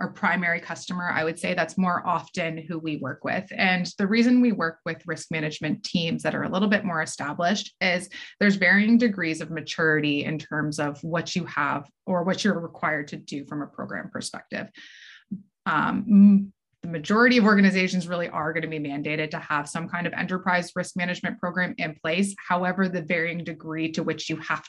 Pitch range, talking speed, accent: 160-195 Hz, 195 wpm, American